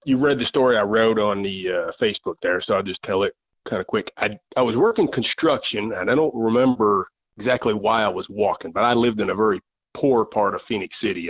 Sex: male